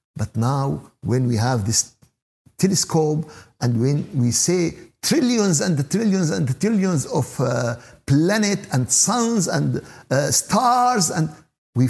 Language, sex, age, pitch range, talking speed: Arabic, male, 60-79, 120-175 Hz, 130 wpm